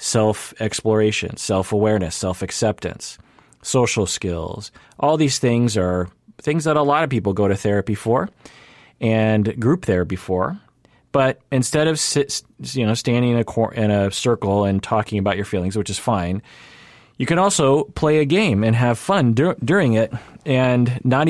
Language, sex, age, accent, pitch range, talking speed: English, male, 30-49, American, 100-125 Hz, 165 wpm